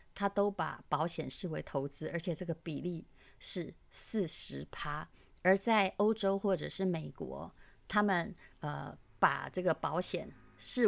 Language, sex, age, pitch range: Chinese, female, 30-49, 155-195 Hz